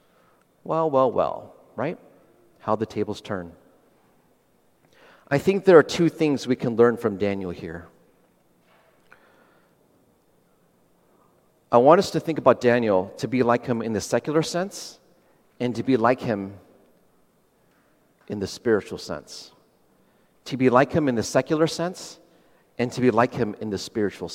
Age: 40-59